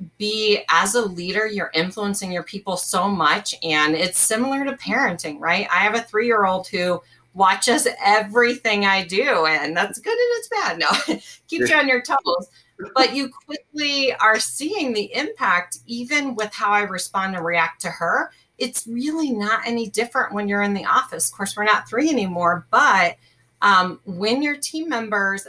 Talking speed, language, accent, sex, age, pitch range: 180 wpm, English, American, female, 30-49, 175-235 Hz